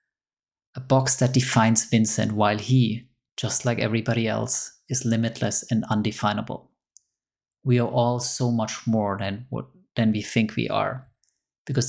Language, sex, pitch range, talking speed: English, male, 110-130 Hz, 145 wpm